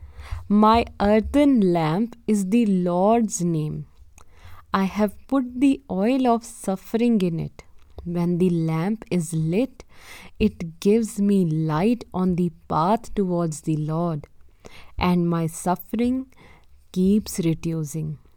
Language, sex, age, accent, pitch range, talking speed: English, female, 20-39, Indian, 160-220 Hz, 120 wpm